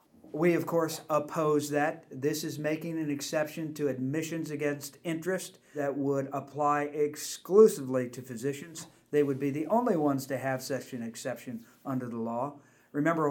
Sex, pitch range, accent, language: male, 135-160 Hz, American, English